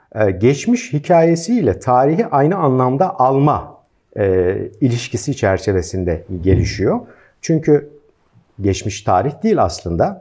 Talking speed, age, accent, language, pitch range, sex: 90 wpm, 50-69, native, Turkish, 110-145 Hz, male